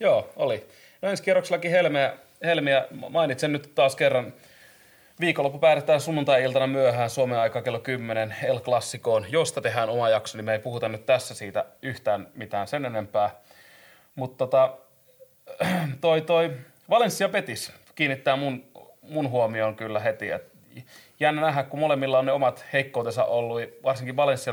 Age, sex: 30-49, male